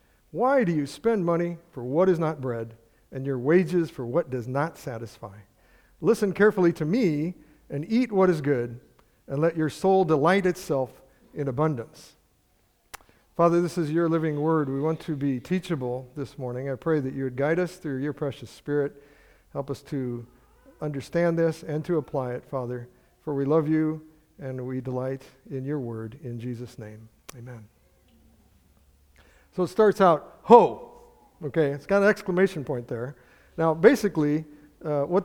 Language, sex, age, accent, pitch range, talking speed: English, male, 50-69, American, 130-180 Hz, 170 wpm